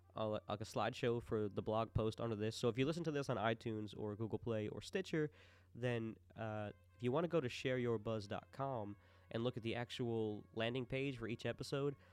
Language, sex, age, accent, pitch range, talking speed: English, male, 20-39, American, 100-125 Hz, 205 wpm